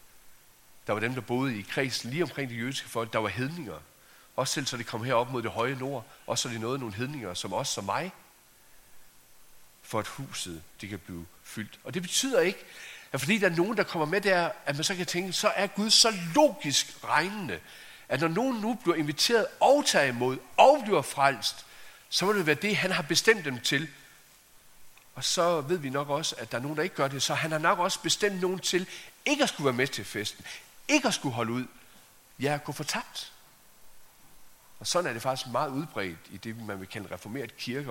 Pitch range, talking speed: 115-165 Hz, 225 wpm